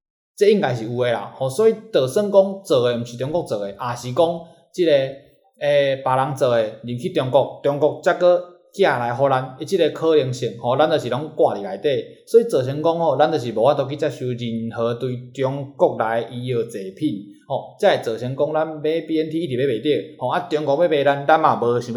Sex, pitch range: male, 125-165 Hz